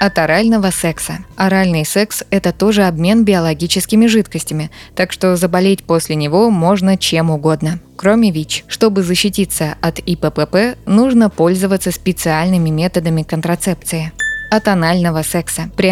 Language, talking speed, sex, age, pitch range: Russian, 125 wpm, female, 20-39, 165-200 Hz